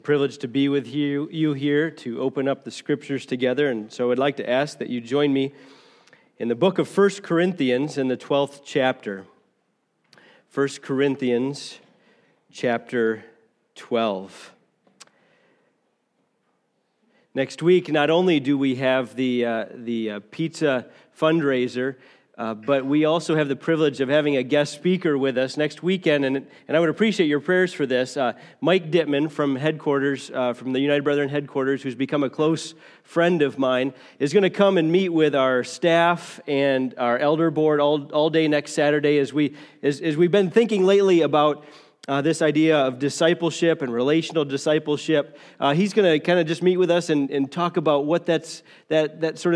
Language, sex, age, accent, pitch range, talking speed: English, male, 40-59, American, 135-160 Hz, 175 wpm